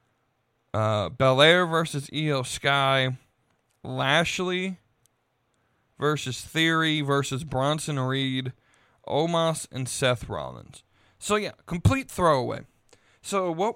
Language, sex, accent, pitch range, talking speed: English, male, American, 125-165 Hz, 95 wpm